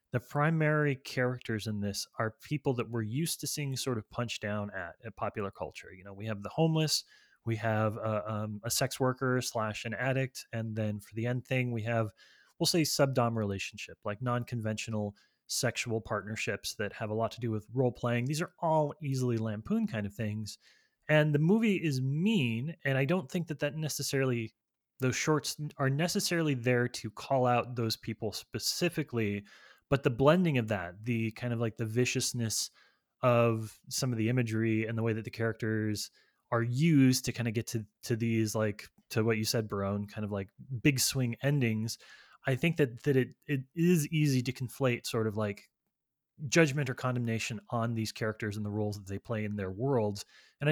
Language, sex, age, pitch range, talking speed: English, male, 20-39, 110-140 Hz, 195 wpm